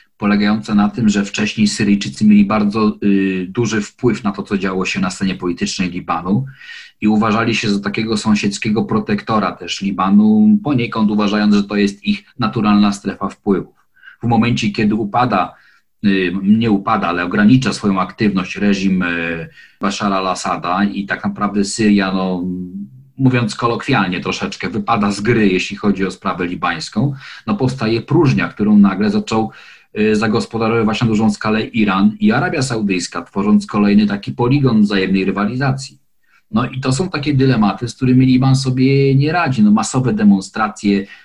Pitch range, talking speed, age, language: 100-120 Hz, 155 wpm, 40-59, Polish